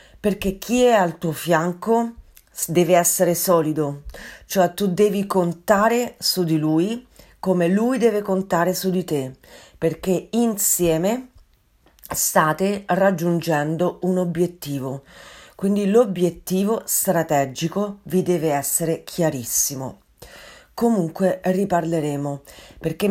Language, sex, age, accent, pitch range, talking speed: Italian, female, 40-59, native, 160-190 Hz, 100 wpm